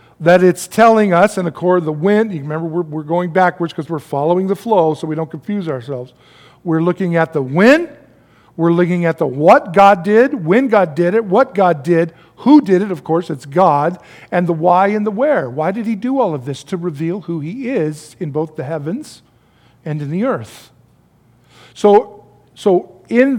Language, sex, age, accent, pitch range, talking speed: English, male, 50-69, American, 150-200 Hz, 210 wpm